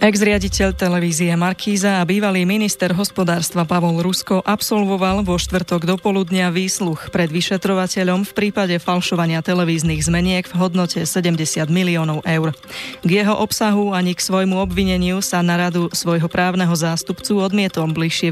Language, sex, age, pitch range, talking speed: Slovak, female, 20-39, 170-190 Hz, 135 wpm